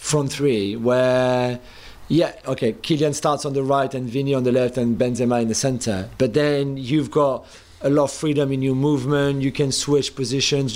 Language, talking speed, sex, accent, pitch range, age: English, 195 wpm, male, French, 125-145 Hz, 40-59